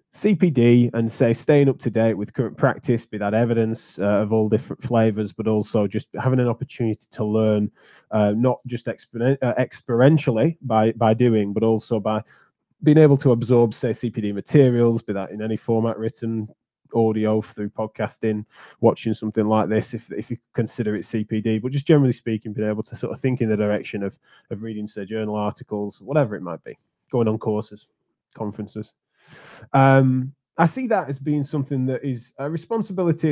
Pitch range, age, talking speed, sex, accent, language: 110-130 Hz, 20-39, 185 wpm, male, British, English